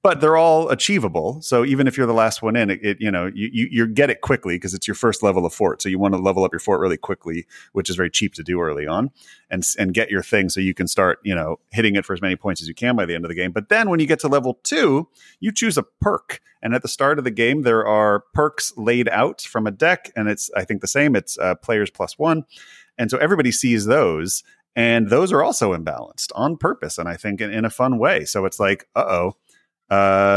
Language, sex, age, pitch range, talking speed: English, male, 30-49, 95-120 Hz, 270 wpm